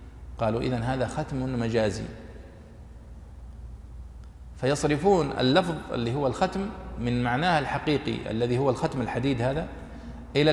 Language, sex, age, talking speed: Arabic, male, 40-59, 110 wpm